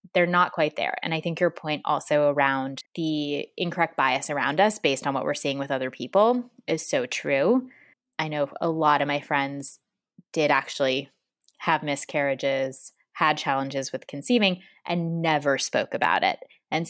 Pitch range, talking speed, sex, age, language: 145-180 Hz, 170 wpm, female, 20-39, English